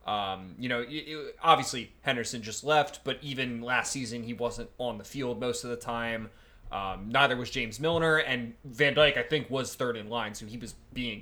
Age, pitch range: 20-39, 110-150 Hz